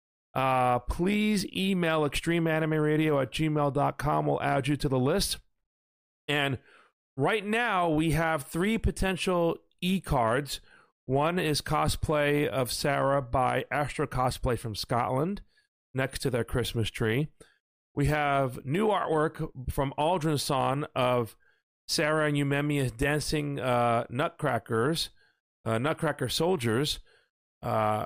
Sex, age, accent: male, 40-59, American